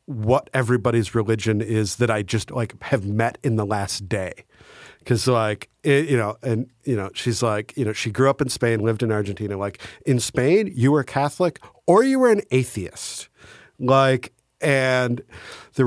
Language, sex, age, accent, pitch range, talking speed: English, male, 50-69, American, 105-140 Hz, 180 wpm